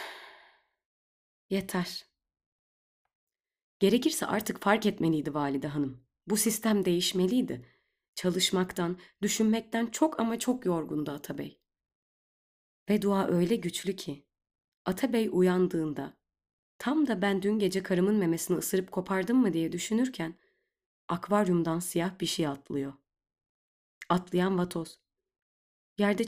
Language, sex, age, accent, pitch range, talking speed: Turkish, female, 30-49, native, 155-200 Hz, 100 wpm